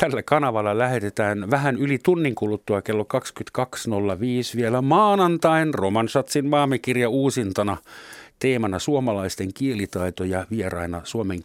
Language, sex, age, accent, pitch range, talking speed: Finnish, male, 50-69, native, 90-130 Hz, 105 wpm